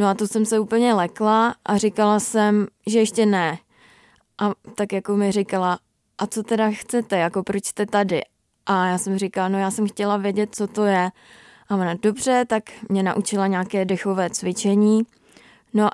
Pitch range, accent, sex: 195-220 Hz, native, female